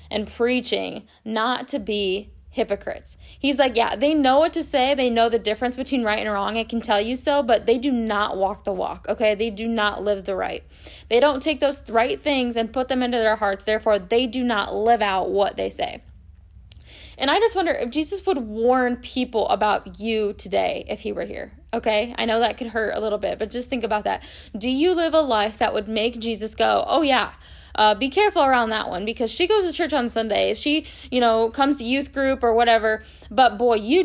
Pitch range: 210-270 Hz